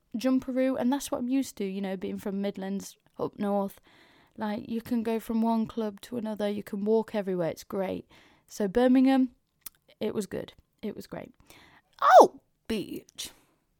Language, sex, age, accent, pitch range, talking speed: English, female, 20-39, British, 185-225 Hz, 170 wpm